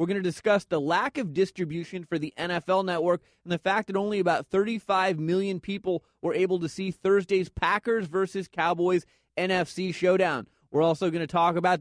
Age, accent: 30-49, American